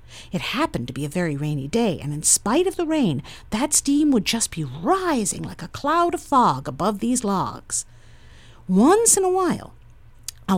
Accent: American